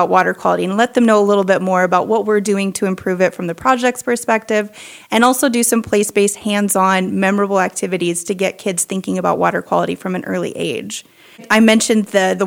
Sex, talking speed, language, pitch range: female, 210 wpm, English, 195-230 Hz